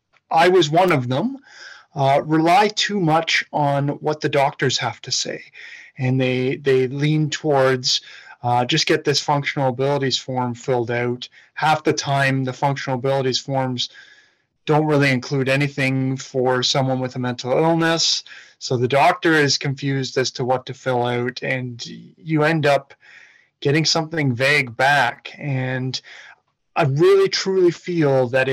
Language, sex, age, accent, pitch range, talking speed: English, male, 30-49, American, 130-165 Hz, 150 wpm